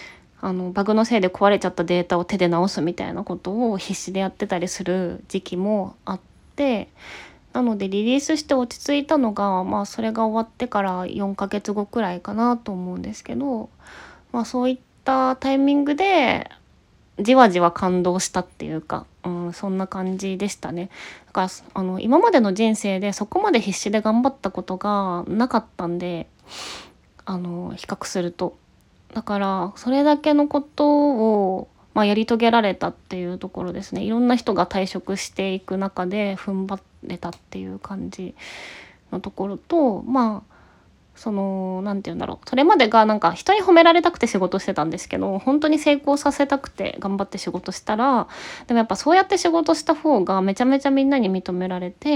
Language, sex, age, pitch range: Japanese, female, 20-39, 185-255 Hz